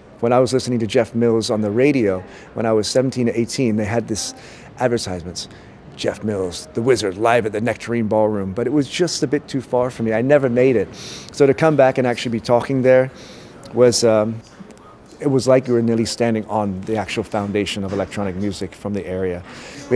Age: 40-59